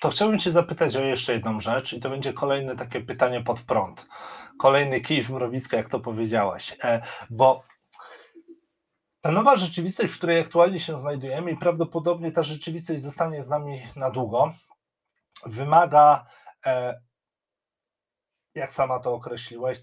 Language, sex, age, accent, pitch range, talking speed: Polish, male, 40-59, native, 125-155 Hz, 145 wpm